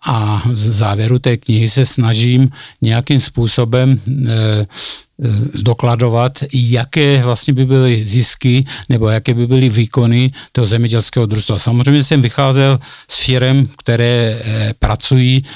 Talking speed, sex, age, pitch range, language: 110 wpm, male, 50-69, 110-125 Hz, Czech